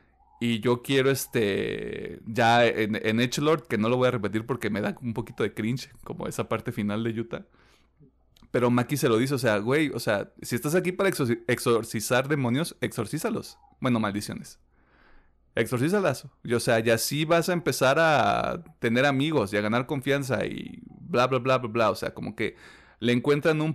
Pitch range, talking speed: 110-140 Hz, 190 wpm